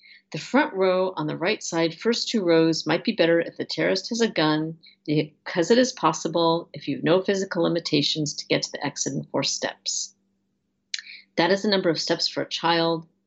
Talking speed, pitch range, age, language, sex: 210 wpm, 155-195 Hz, 40-59, English, female